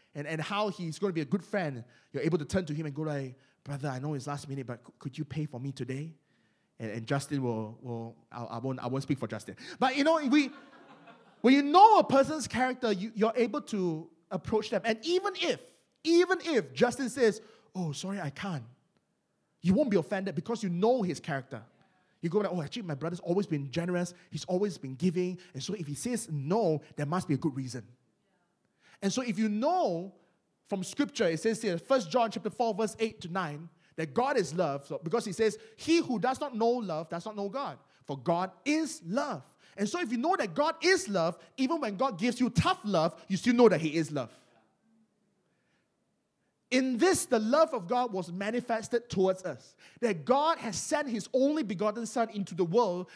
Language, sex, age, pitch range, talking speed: English, male, 20-39, 160-245 Hz, 215 wpm